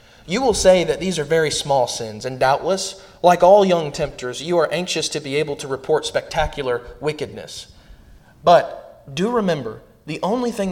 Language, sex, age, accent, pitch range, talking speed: English, male, 20-39, American, 120-150 Hz, 175 wpm